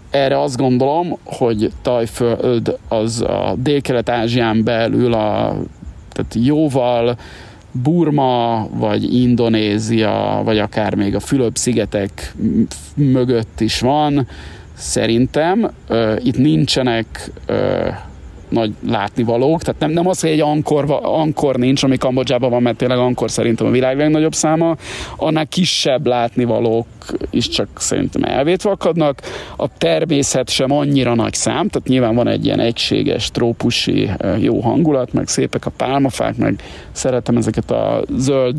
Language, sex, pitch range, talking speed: Hungarian, male, 115-140 Hz, 130 wpm